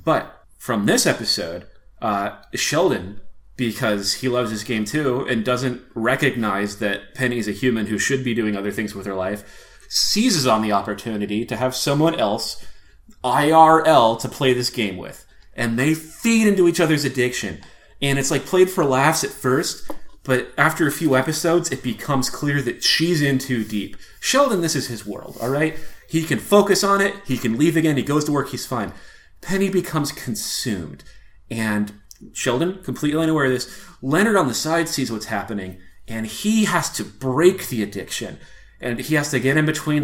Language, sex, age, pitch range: English, male, 30-49, 115-160 Hz